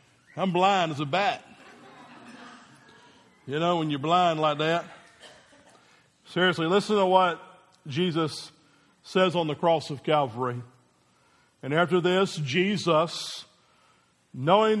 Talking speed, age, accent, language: 115 wpm, 50-69, American, English